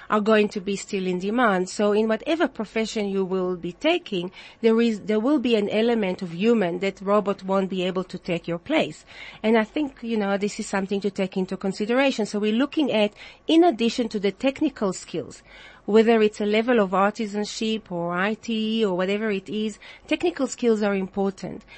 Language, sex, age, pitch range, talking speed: English, female, 40-59, 200-235 Hz, 195 wpm